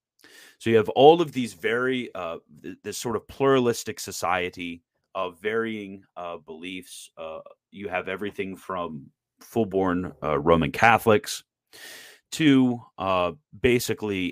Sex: male